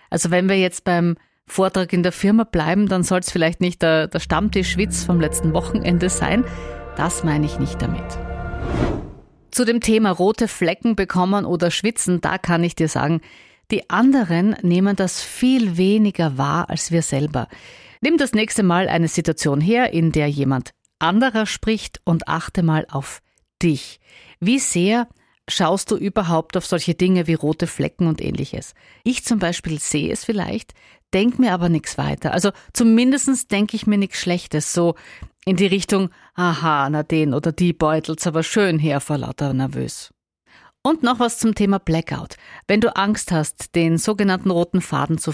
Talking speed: 175 wpm